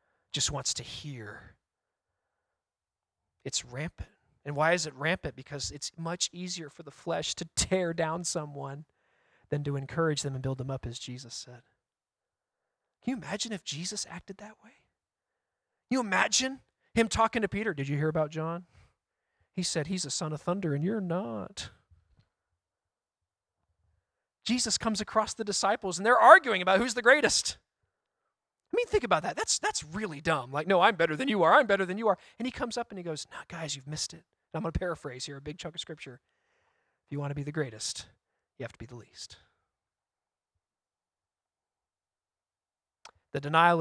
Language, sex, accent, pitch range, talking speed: English, male, American, 135-190 Hz, 185 wpm